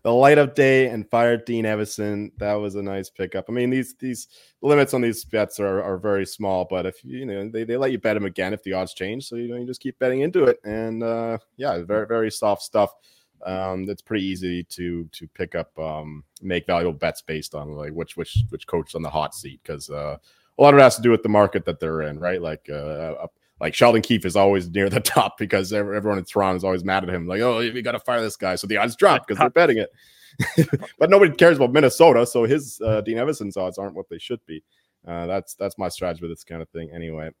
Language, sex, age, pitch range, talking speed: English, male, 30-49, 95-120 Hz, 250 wpm